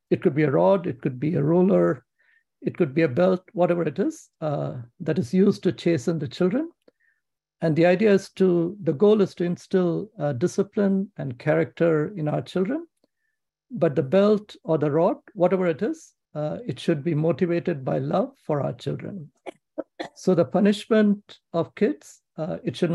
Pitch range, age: 155-190 Hz, 60-79